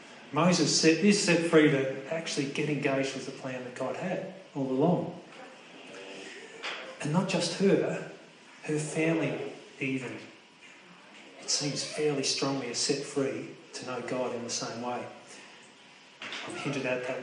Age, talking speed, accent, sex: 30-49, 145 wpm, New Zealand, male